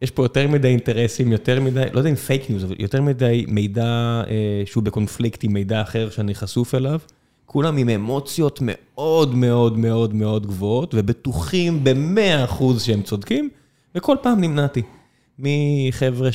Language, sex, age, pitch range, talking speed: Hebrew, male, 20-39, 115-145 Hz, 150 wpm